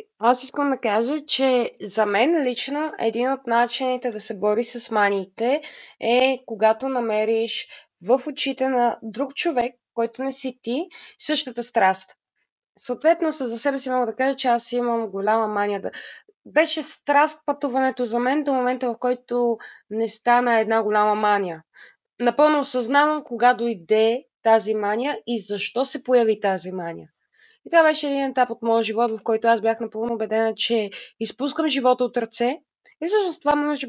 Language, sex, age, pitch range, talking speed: Bulgarian, female, 20-39, 225-265 Hz, 160 wpm